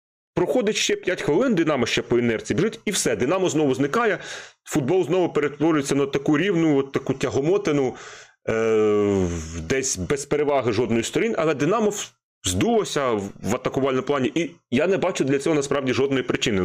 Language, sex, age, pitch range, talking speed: Ukrainian, male, 30-49, 115-150 Hz, 150 wpm